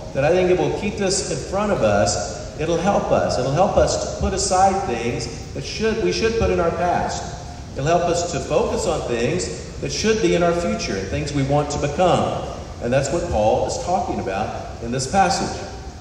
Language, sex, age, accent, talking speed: English, male, 50-69, American, 215 wpm